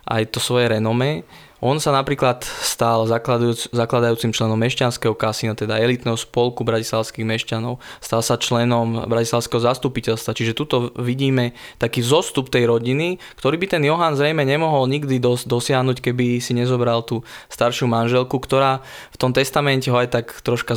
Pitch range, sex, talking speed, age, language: 115-130 Hz, male, 150 wpm, 20-39, Slovak